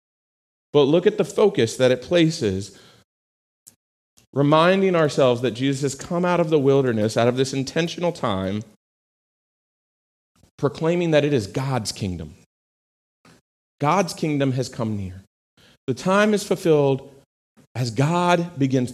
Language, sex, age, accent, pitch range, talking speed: English, male, 40-59, American, 110-160 Hz, 130 wpm